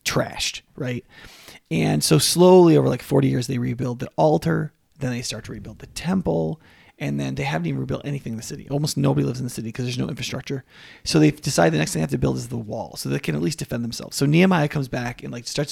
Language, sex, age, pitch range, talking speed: English, male, 30-49, 120-170 Hz, 255 wpm